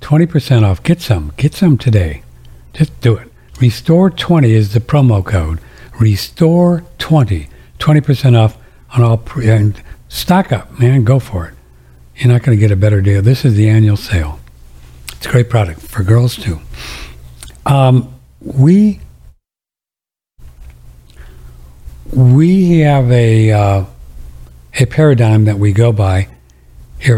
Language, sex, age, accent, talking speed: English, male, 60-79, American, 135 wpm